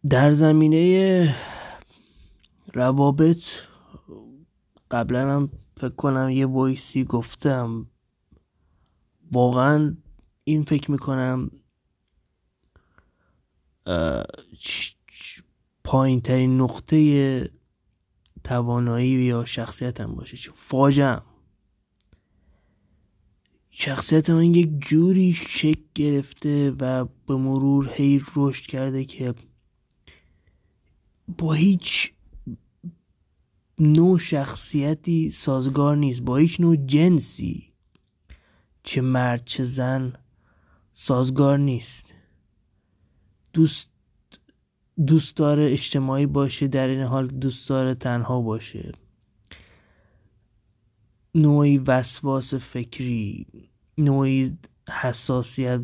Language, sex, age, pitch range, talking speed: Persian, male, 20-39, 105-140 Hz, 70 wpm